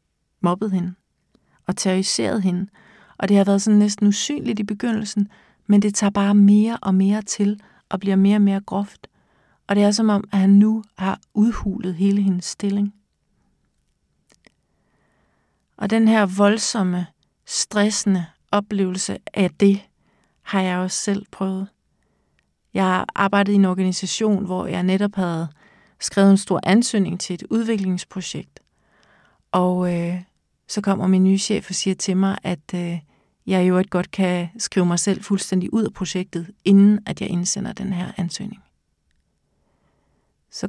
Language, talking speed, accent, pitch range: Danish, 155 wpm, native, 185-210 Hz